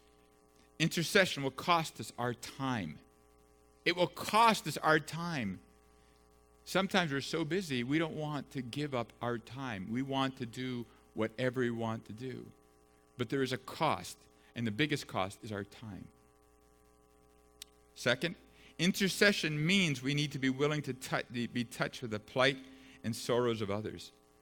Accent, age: American, 50-69